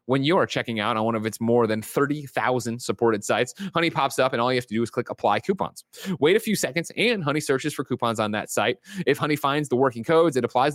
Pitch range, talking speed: 115-165 Hz, 260 wpm